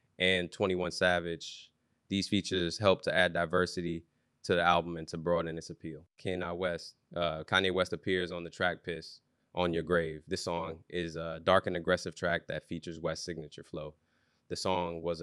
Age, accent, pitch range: 20-39, American, 85-90 Hz